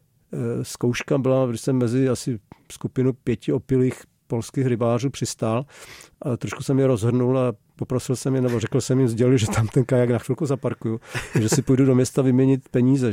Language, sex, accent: Czech, male, native